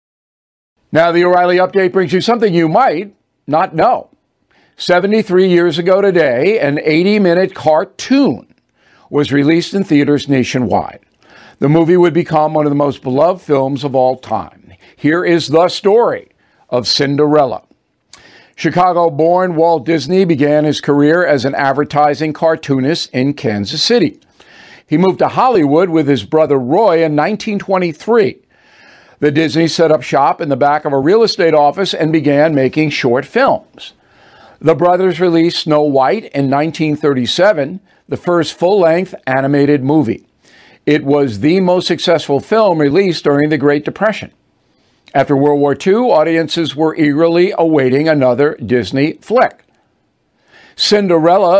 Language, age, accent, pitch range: English, 50-69, American, 145-180 Hz